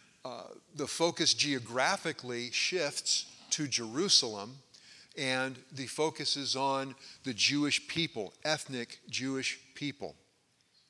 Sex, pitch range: male, 120-145 Hz